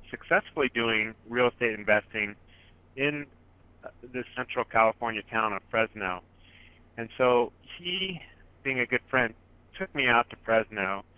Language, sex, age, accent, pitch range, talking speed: English, male, 40-59, American, 95-120 Hz, 130 wpm